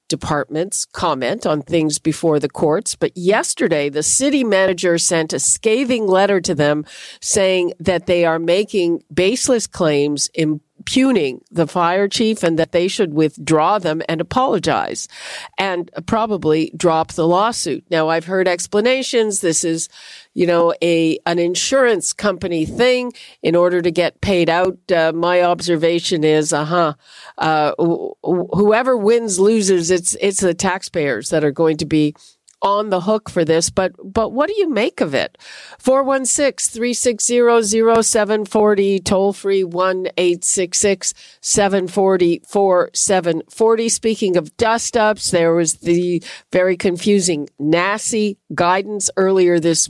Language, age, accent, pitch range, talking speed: English, 50-69, American, 165-210 Hz, 135 wpm